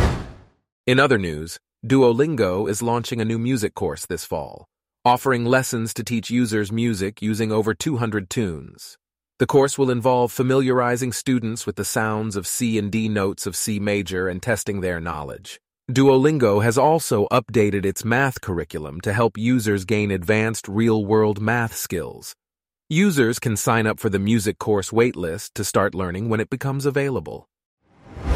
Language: English